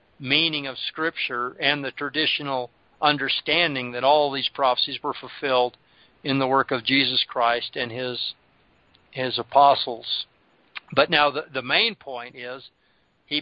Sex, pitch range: male, 130-155 Hz